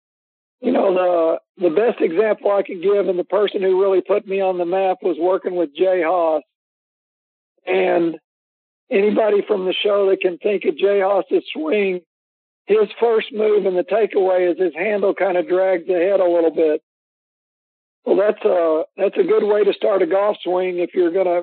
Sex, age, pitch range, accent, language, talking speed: male, 60-79, 180-210 Hz, American, English, 190 wpm